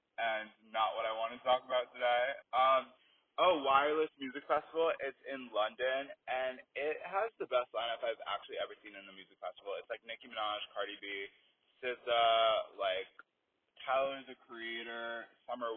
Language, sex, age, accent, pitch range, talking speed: English, male, 20-39, American, 120-155 Hz, 165 wpm